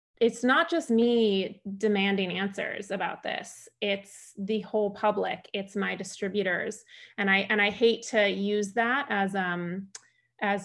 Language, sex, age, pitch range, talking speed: English, female, 20-39, 190-220 Hz, 145 wpm